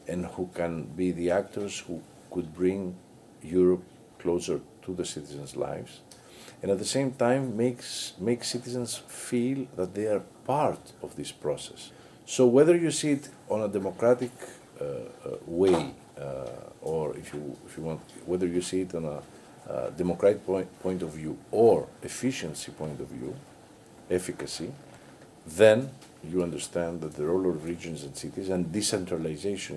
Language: French